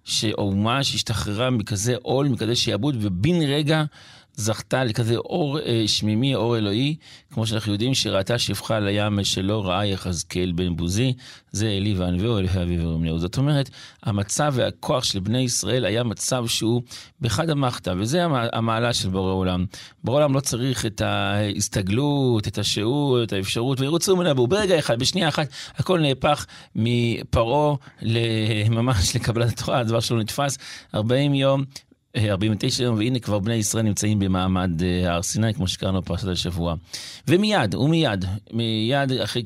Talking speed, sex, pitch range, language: 150 wpm, male, 105-130 Hz, Hebrew